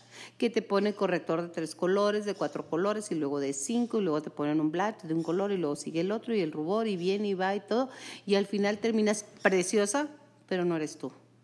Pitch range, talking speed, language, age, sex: 180-225 Hz, 240 wpm, Spanish, 40-59, female